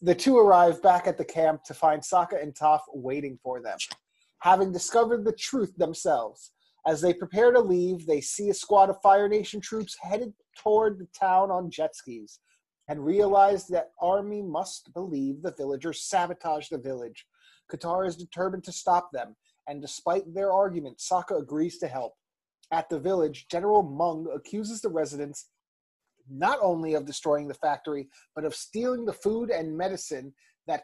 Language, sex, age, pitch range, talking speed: English, male, 30-49, 150-200 Hz, 170 wpm